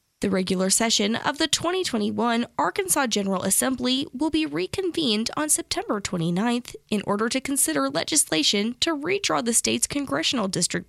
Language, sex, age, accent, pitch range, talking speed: English, female, 10-29, American, 195-285 Hz, 145 wpm